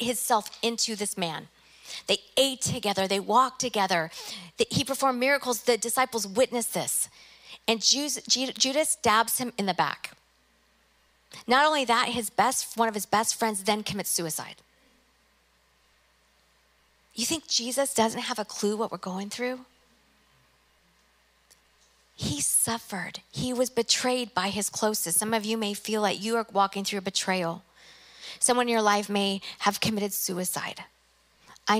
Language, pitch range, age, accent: English, 180-230 Hz, 40-59, American